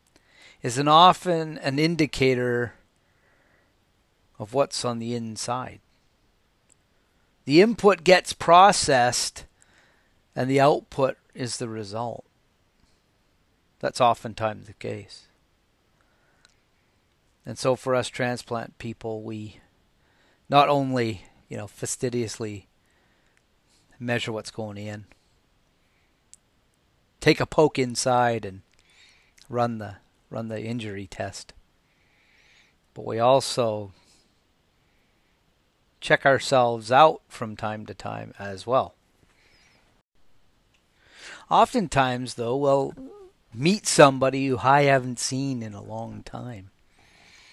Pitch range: 105-130 Hz